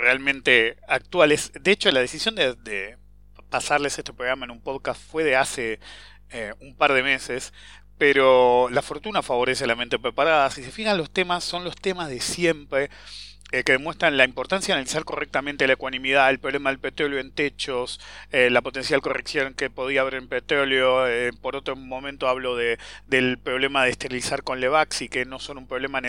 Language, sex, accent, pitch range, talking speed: English, male, Argentinian, 120-155 Hz, 190 wpm